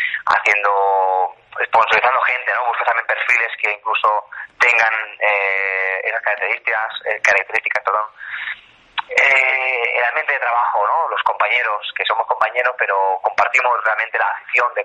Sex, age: male, 30-49